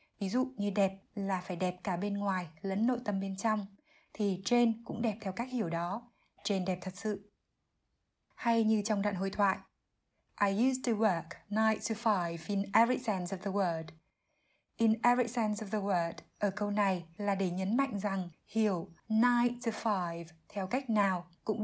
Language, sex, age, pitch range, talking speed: Vietnamese, female, 20-39, 190-230 Hz, 190 wpm